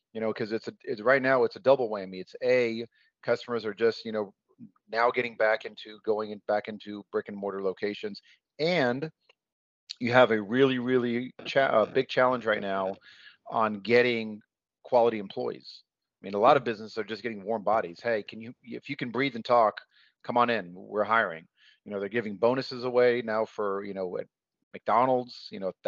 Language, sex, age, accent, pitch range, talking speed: English, male, 40-59, American, 105-120 Hz, 200 wpm